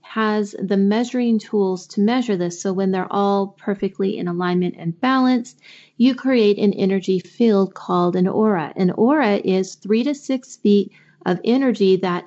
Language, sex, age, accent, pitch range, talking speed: English, female, 30-49, American, 180-220 Hz, 165 wpm